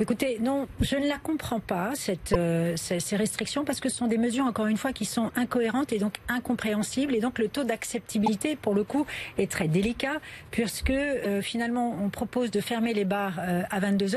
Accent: French